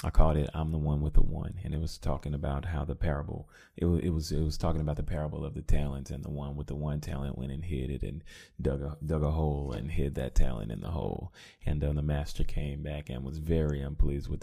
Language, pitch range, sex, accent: English, 75-85 Hz, male, American